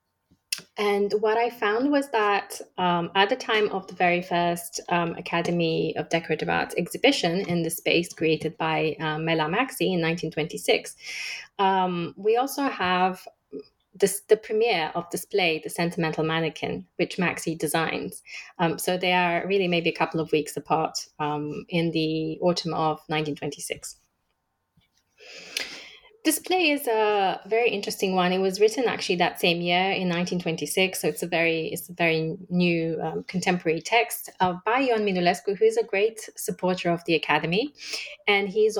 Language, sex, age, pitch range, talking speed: English, female, 20-39, 165-210 Hz, 160 wpm